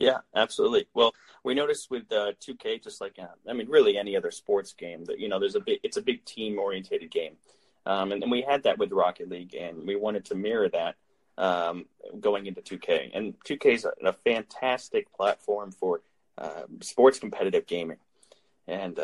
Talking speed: 195 wpm